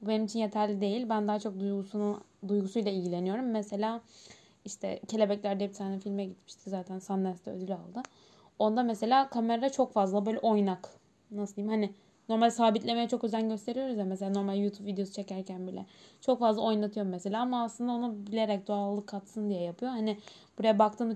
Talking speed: 165 wpm